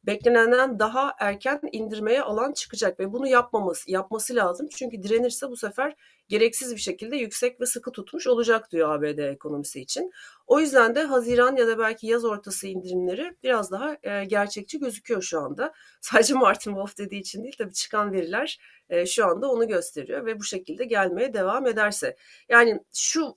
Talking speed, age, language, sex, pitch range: 165 wpm, 40-59, Turkish, female, 185-250 Hz